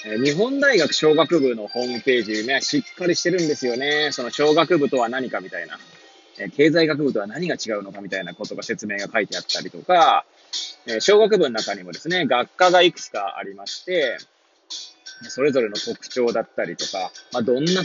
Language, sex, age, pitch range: Japanese, male, 20-39, 125-180 Hz